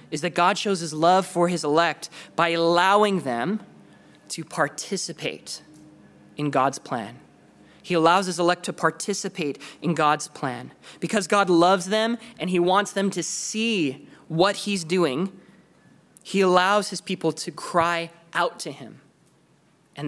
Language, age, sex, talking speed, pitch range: English, 20-39, male, 145 wpm, 160-210 Hz